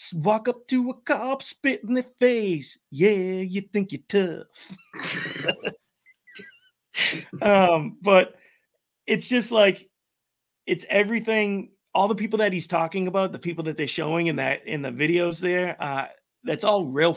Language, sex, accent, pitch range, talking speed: English, male, American, 135-190 Hz, 145 wpm